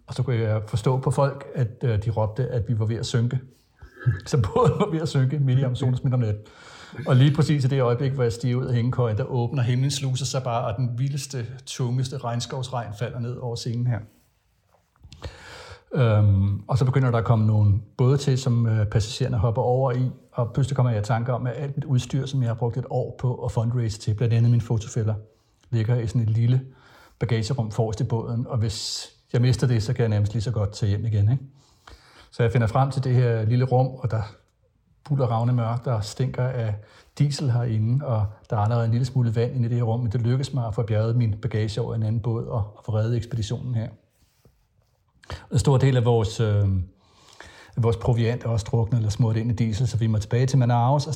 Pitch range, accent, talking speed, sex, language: 115-130 Hz, native, 230 wpm, male, Danish